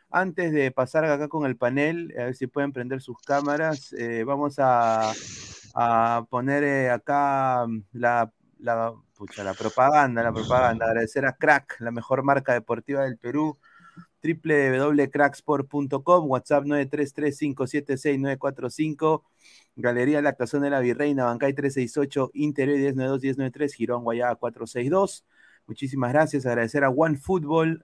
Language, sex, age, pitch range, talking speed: Spanish, male, 30-49, 120-150 Hz, 130 wpm